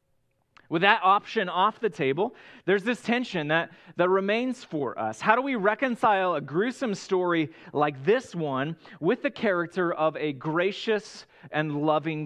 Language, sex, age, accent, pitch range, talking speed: English, male, 30-49, American, 165-210 Hz, 155 wpm